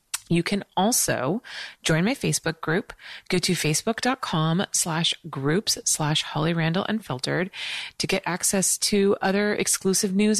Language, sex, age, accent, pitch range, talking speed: English, female, 30-49, American, 160-215 Hz, 120 wpm